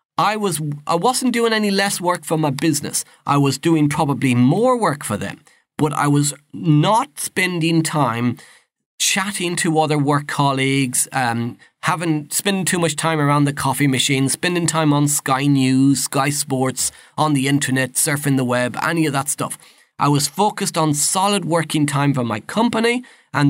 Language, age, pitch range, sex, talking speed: English, 30-49, 130-165 Hz, male, 175 wpm